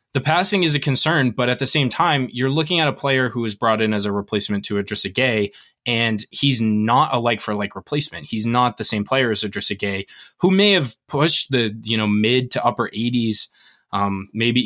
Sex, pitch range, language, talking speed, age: male, 105-130 Hz, English, 215 wpm, 20-39